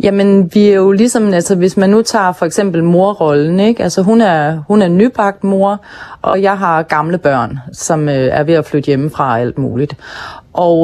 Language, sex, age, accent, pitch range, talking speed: Danish, female, 30-49, native, 160-200 Hz, 205 wpm